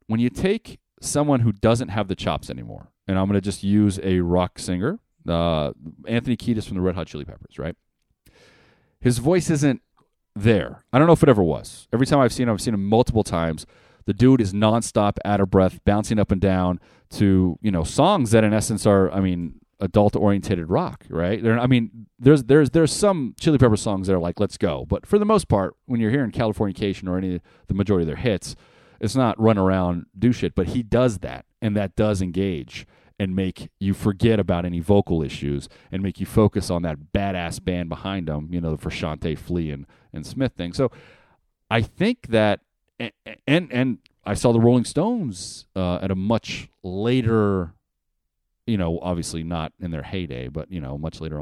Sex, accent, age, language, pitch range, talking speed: male, American, 30-49, English, 90-120 Hz, 205 wpm